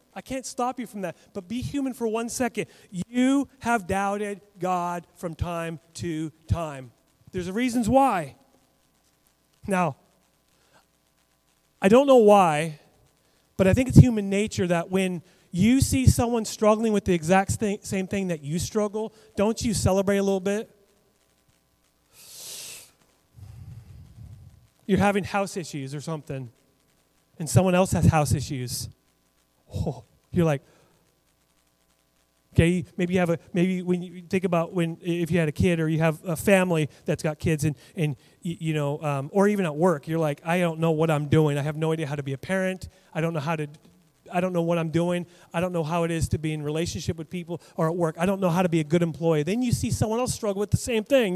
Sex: male